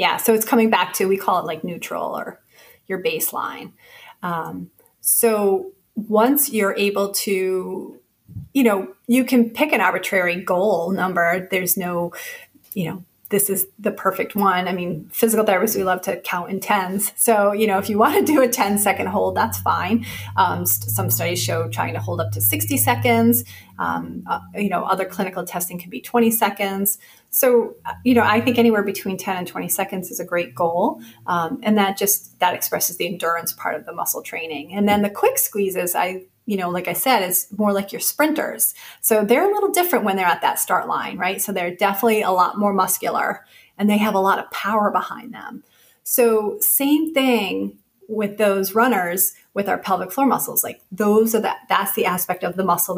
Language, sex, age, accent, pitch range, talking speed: English, female, 30-49, American, 175-220 Hz, 200 wpm